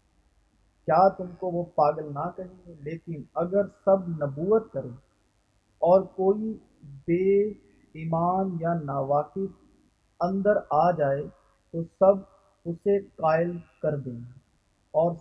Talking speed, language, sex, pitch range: 115 wpm, Urdu, male, 145-180 Hz